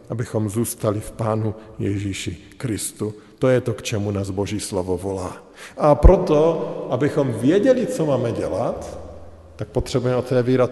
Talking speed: 140 wpm